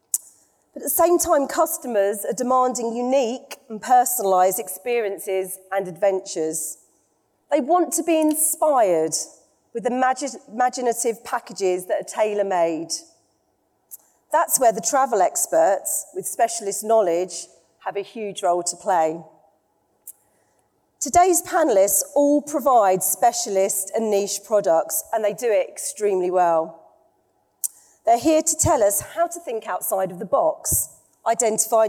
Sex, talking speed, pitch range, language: female, 120 wpm, 190-290 Hz, English